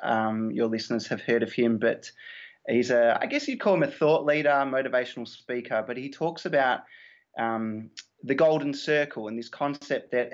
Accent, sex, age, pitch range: Australian, male, 20-39, 115-140 Hz